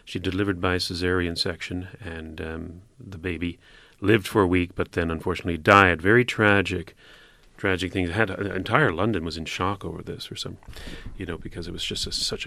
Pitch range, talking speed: 90-115 Hz, 195 wpm